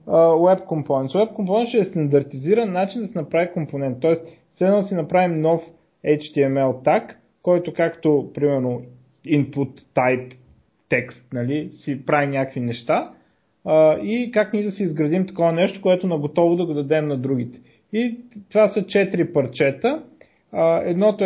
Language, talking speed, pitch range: Bulgarian, 150 wpm, 145-190 Hz